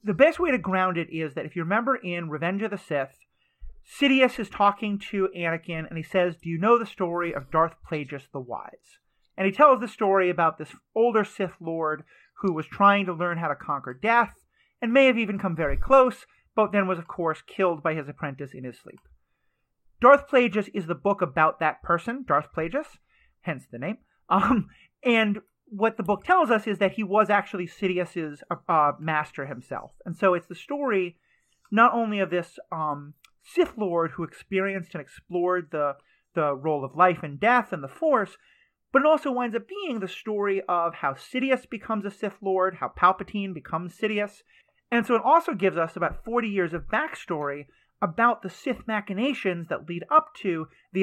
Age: 30-49